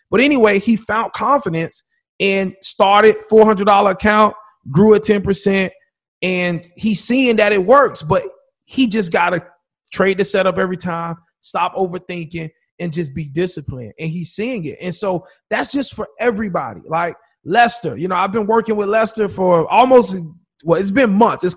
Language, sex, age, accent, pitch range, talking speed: English, male, 30-49, American, 175-215 Hz, 175 wpm